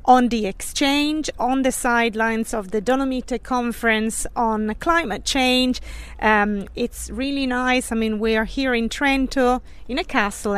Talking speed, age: 155 wpm, 40-59